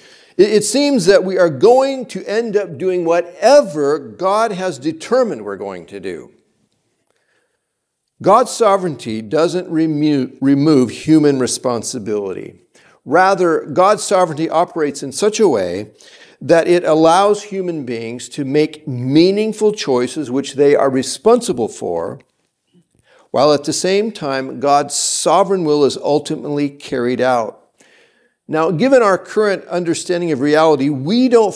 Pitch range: 145-215 Hz